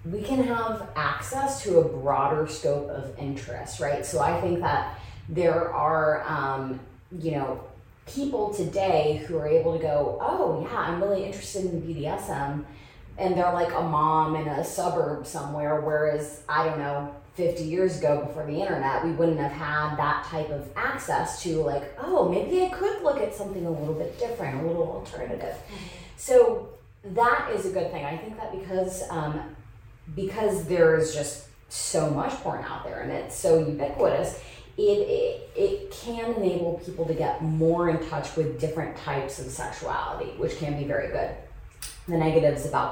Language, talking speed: English, 175 wpm